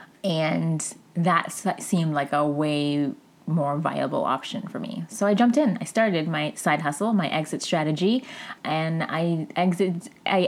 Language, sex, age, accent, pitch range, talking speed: English, female, 20-39, American, 150-190 Hz, 150 wpm